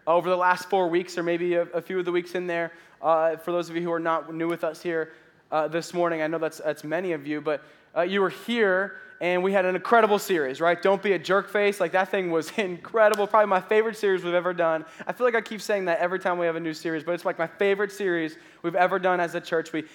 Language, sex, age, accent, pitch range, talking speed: English, male, 10-29, American, 175-215 Hz, 280 wpm